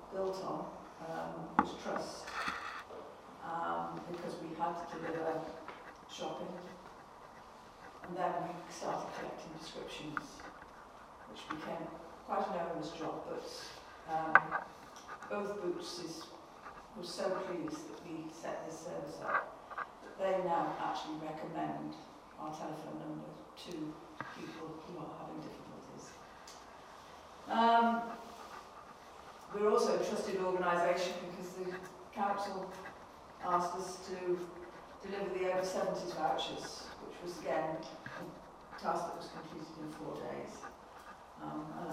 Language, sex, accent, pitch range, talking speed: English, female, British, 160-185 Hz, 115 wpm